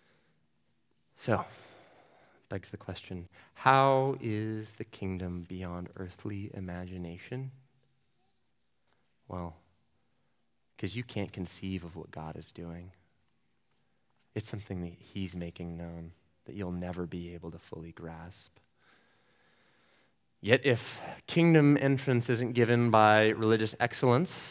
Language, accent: English, American